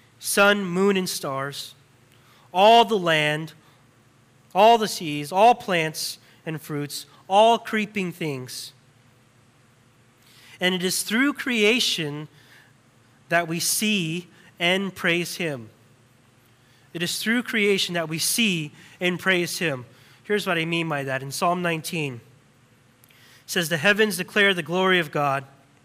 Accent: American